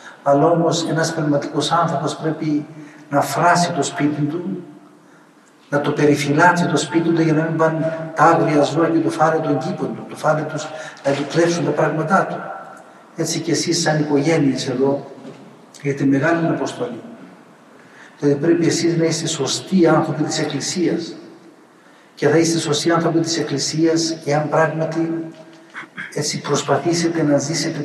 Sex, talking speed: male, 150 wpm